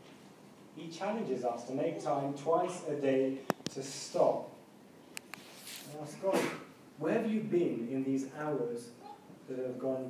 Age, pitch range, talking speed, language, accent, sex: 30-49, 125-155 Hz, 145 wpm, English, British, male